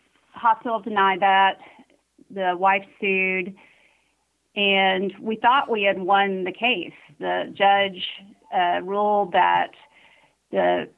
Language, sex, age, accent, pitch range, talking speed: English, female, 40-59, American, 185-220 Hz, 110 wpm